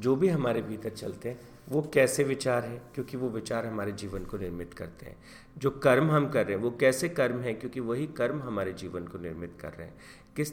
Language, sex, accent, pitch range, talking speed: Hindi, male, native, 95-130 Hz, 230 wpm